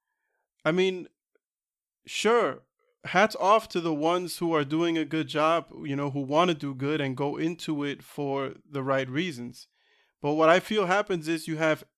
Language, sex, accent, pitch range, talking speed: English, male, American, 140-180 Hz, 185 wpm